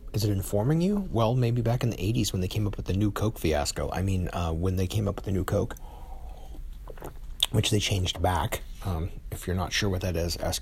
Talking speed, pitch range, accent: 245 wpm, 85-110 Hz, American